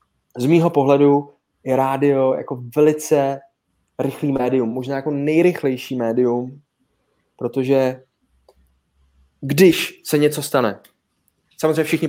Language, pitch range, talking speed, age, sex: Czech, 115-135 Hz, 100 wpm, 20-39, male